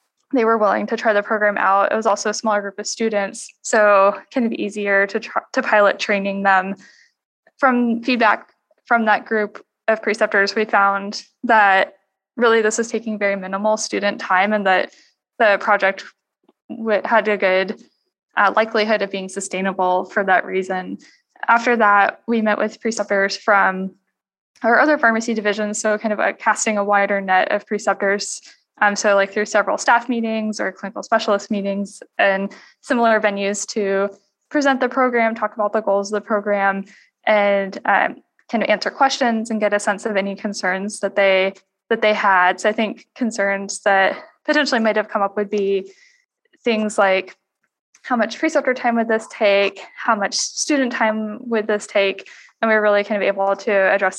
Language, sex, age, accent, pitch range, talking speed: English, female, 10-29, American, 200-225 Hz, 175 wpm